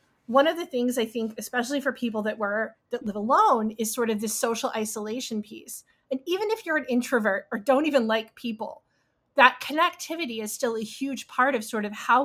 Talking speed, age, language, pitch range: 210 wpm, 30-49, English, 225-285 Hz